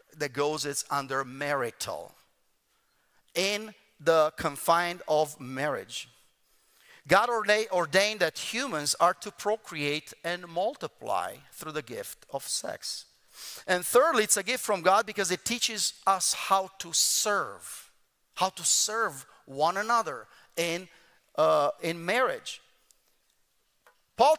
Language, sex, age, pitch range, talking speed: English, male, 40-59, 170-220 Hz, 120 wpm